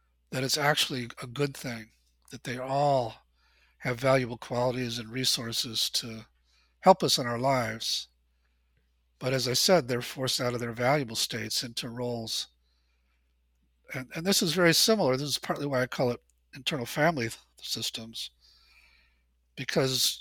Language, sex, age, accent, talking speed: English, male, 50-69, American, 150 wpm